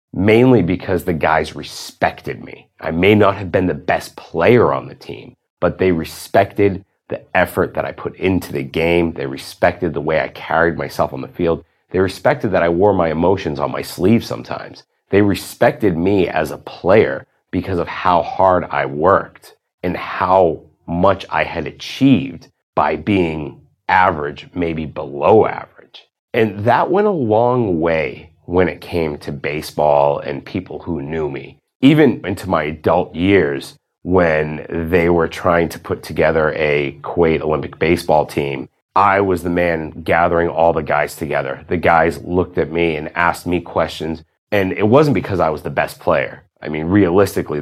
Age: 30-49